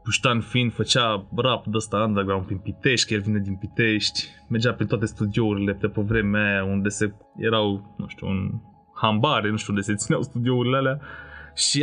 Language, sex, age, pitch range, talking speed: Romanian, male, 20-39, 105-130 Hz, 185 wpm